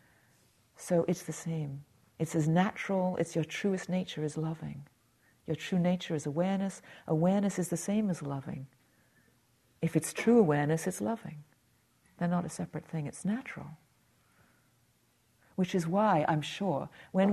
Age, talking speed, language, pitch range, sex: 50-69, 150 wpm, English, 155-195 Hz, female